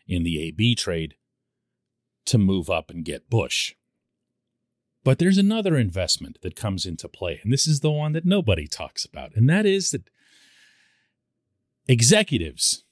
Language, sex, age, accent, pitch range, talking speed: English, male, 40-59, American, 100-150 Hz, 150 wpm